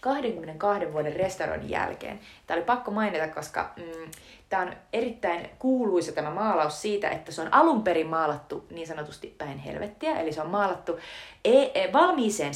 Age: 30-49